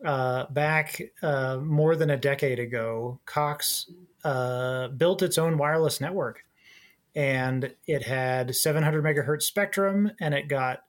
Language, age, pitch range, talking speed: English, 30-49, 130-160 Hz, 130 wpm